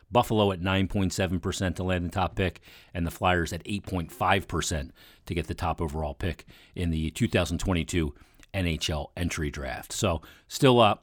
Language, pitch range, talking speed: English, 85-105 Hz, 150 wpm